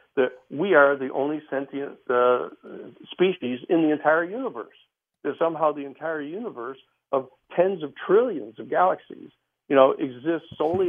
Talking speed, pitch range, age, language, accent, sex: 150 wpm, 125-150 Hz, 60-79, English, American, male